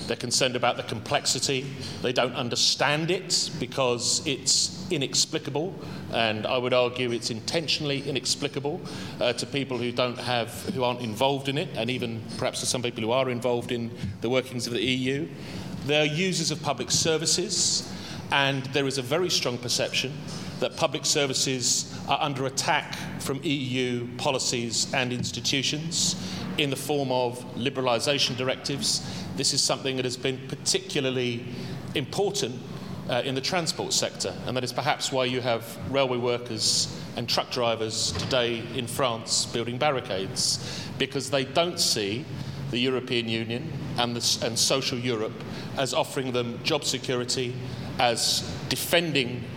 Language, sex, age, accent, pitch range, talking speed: English, male, 40-59, British, 120-145 Hz, 150 wpm